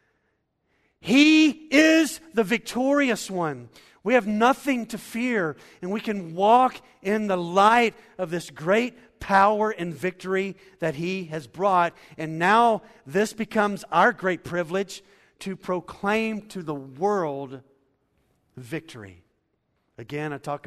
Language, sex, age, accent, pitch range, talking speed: English, male, 50-69, American, 115-175 Hz, 125 wpm